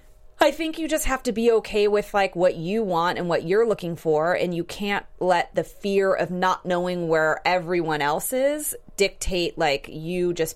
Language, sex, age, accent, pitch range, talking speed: English, female, 30-49, American, 165-220 Hz, 200 wpm